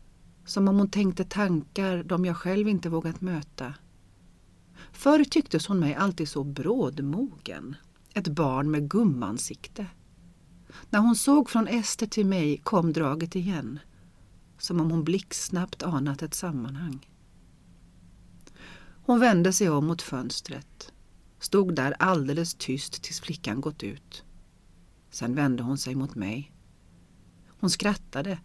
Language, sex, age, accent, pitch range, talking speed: Swedish, female, 40-59, native, 145-205 Hz, 130 wpm